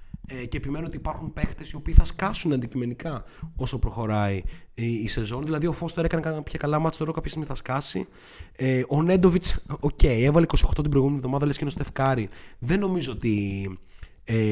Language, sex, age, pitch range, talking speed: Greek, male, 30-49, 110-165 Hz, 205 wpm